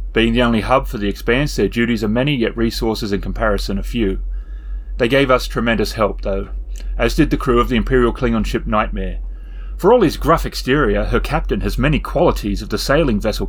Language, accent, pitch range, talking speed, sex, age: English, Australian, 100-140 Hz, 210 wpm, male, 30-49